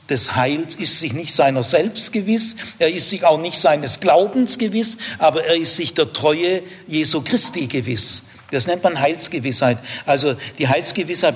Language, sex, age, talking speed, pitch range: German, male, 60-79, 170 wpm, 140-190 Hz